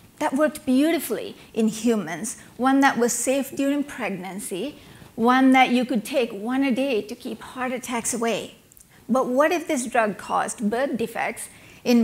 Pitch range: 215-260 Hz